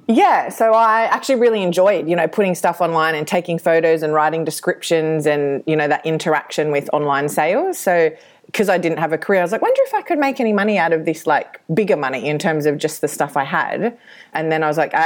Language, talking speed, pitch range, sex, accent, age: English, 245 wpm, 150-180 Hz, female, Australian, 30-49